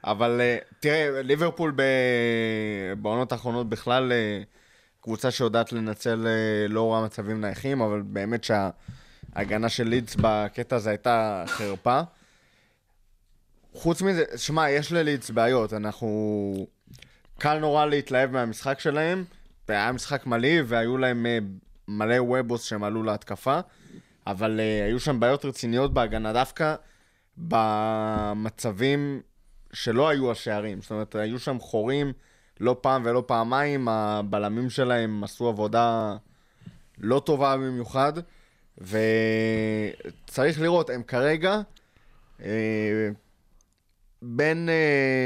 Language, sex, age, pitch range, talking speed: Hebrew, male, 20-39, 110-140 Hz, 105 wpm